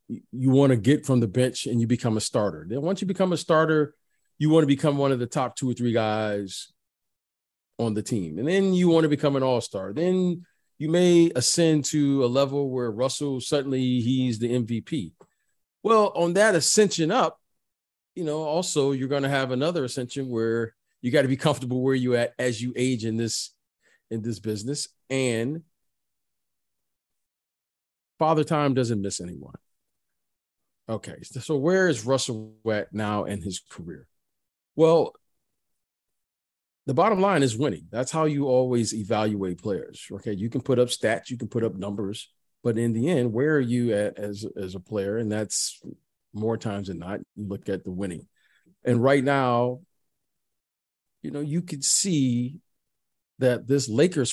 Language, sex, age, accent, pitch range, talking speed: English, male, 40-59, American, 110-145 Hz, 175 wpm